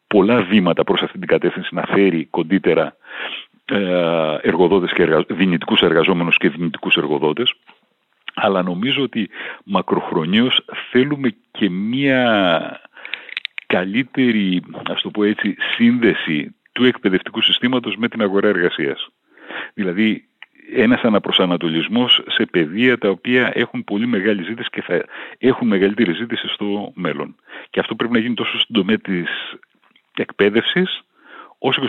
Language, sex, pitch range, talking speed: Greek, male, 100-130 Hz, 110 wpm